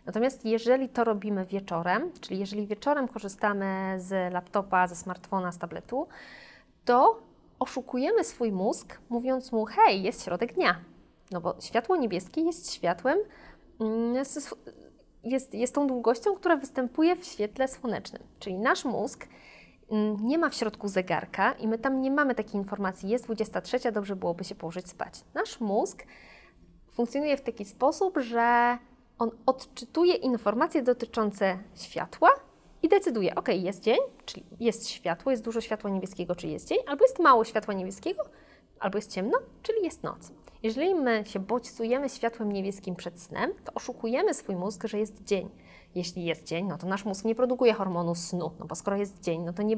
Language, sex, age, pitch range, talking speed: Polish, female, 20-39, 195-260 Hz, 165 wpm